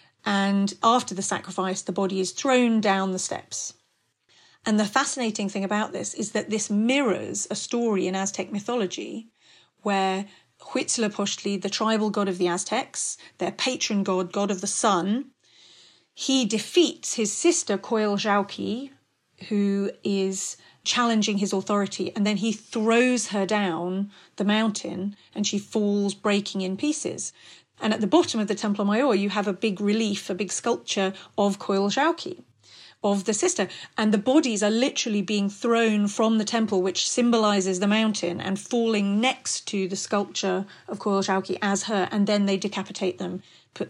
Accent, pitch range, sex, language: British, 195-225 Hz, female, English